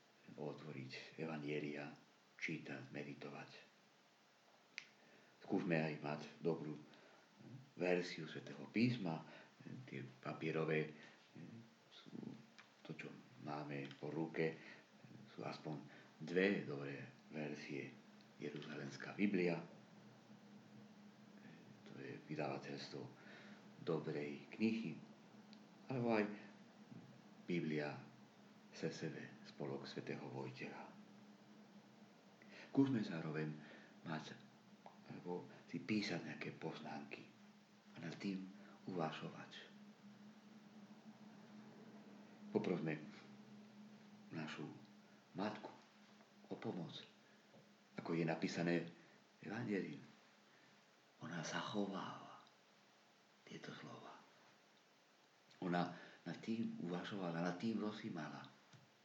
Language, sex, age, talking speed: Czech, male, 50-69, 70 wpm